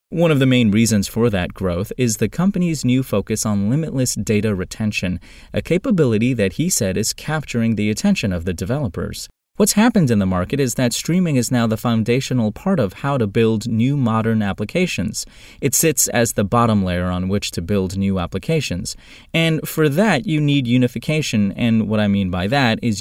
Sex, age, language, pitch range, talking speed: male, 20-39, English, 100-130 Hz, 195 wpm